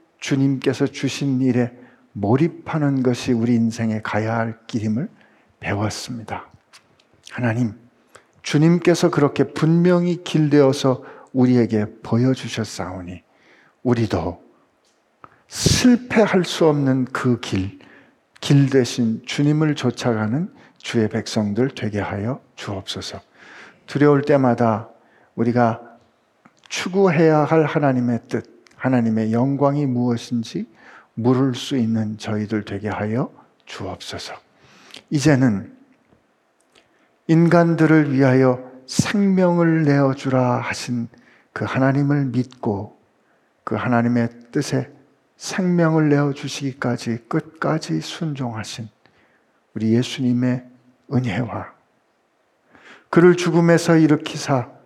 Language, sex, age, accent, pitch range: Korean, male, 50-69, native, 115-150 Hz